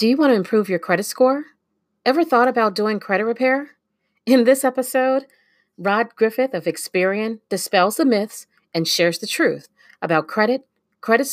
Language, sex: English, female